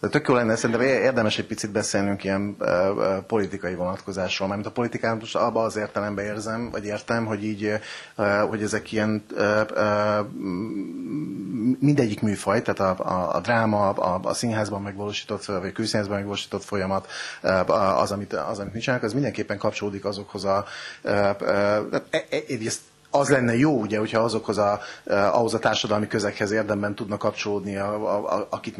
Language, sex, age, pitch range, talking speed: Hungarian, male, 30-49, 100-120 Hz, 135 wpm